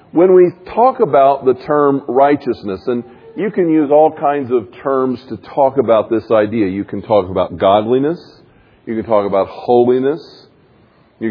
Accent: American